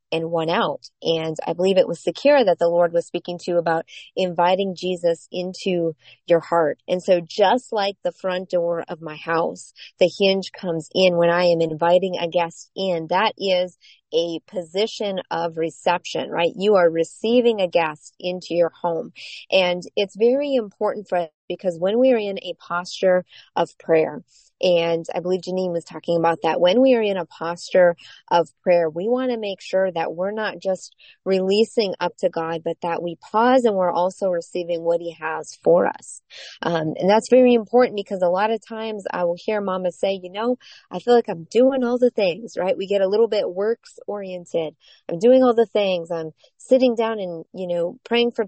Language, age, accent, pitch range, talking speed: English, 30-49, American, 170-215 Hz, 200 wpm